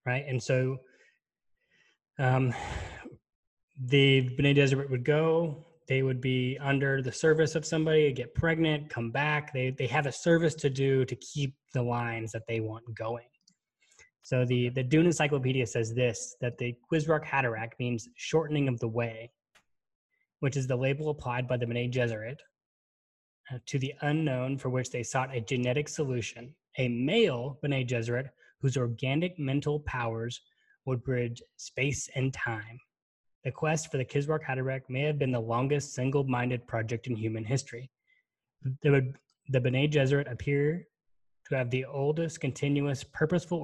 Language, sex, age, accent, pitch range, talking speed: English, male, 20-39, American, 120-145 Hz, 150 wpm